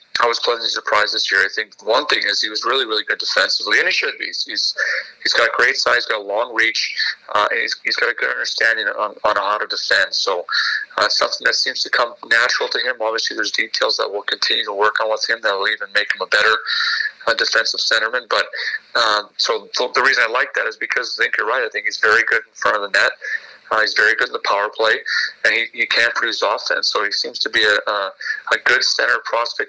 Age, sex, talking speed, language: 30-49, male, 255 wpm, English